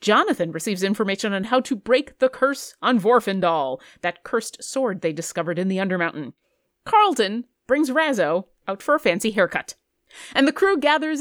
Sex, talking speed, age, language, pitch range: female, 165 wpm, 30-49, English, 195-295 Hz